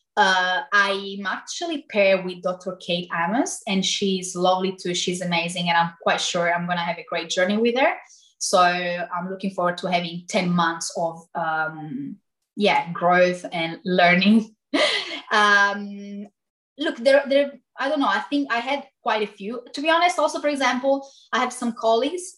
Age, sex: 20-39, female